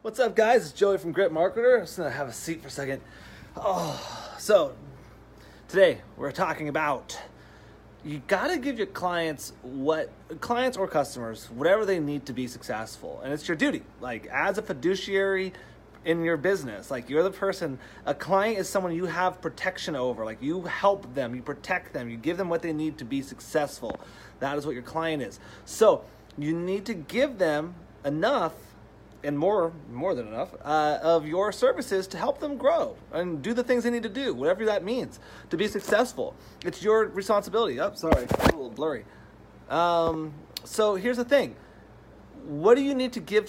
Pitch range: 145-205 Hz